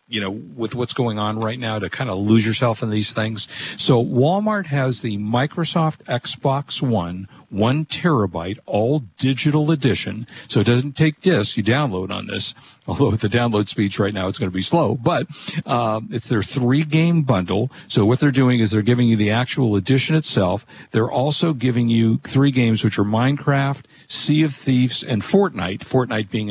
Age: 50-69